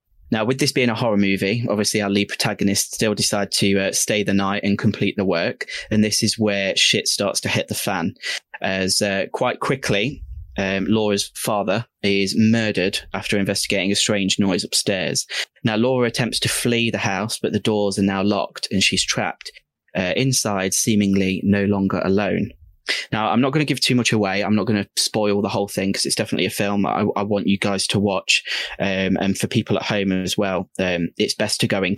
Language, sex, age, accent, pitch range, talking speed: English, male, 20-39, British, 100-110 Hz, 210 wpm